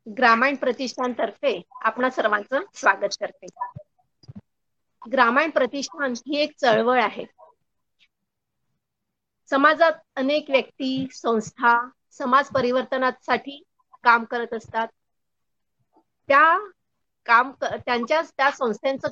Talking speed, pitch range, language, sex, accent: 70 wpm, 235-280 Hz, Hindi, female, native